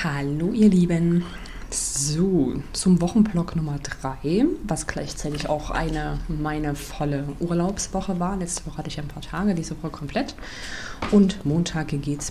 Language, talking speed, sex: German, 140 wpm, female